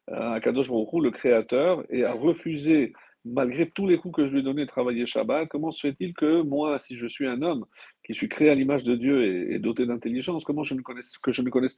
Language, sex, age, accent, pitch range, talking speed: French, male, 50-69, French, 125-150 Hz, 235 wpm